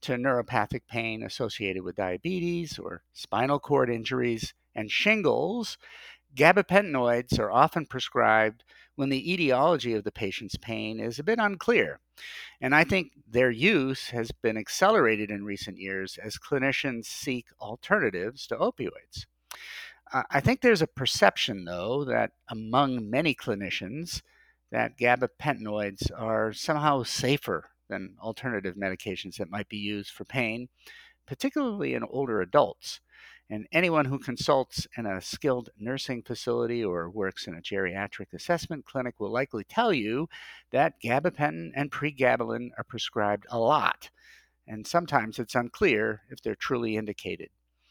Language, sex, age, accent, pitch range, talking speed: English, male, 50-69, American, 110-145 Hz, 135 wpm